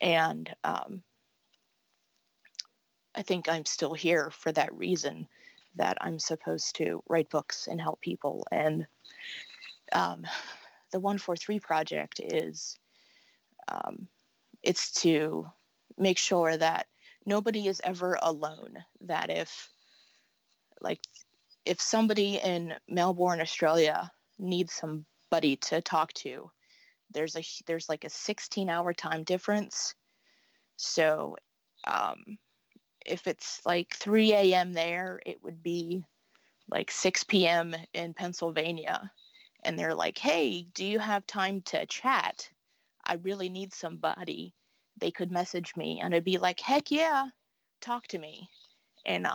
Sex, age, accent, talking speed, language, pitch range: female, 20-39, American, 120 wpm, English, 165-205 Hz